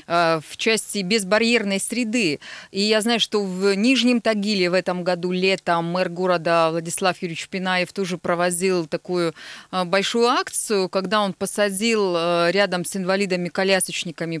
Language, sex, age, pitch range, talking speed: Russian, female, 20-39, 180-235 Hz, 130 wpm